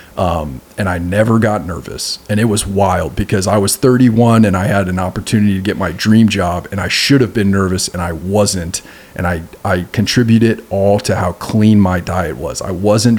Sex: male